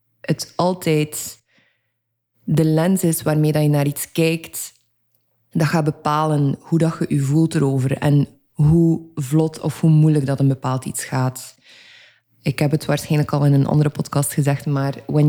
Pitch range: 130-155 Hz